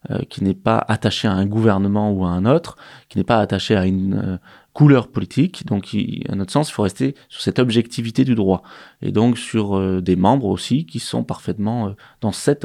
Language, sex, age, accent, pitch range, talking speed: French, male, 20-39, French, 95-120 Hz, 225 wpm